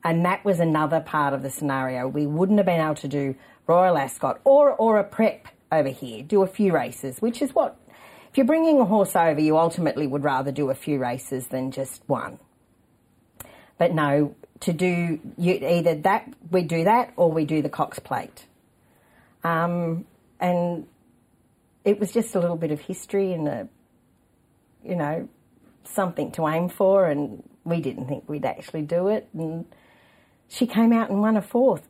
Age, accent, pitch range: 40-59, Australian, 155-215 Hz